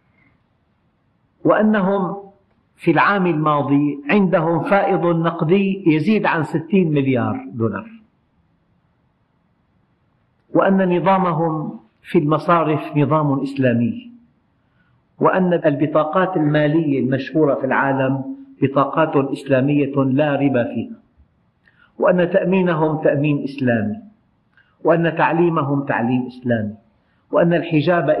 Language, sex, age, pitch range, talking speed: Arabic, male, 50-69, 135-175 Hz, 85 wpm